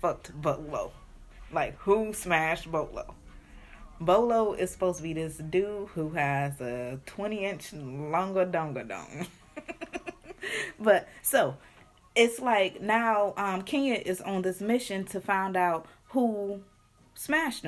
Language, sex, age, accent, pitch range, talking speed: English, female, 20-39, American, 170-210 Hz, 120 wpm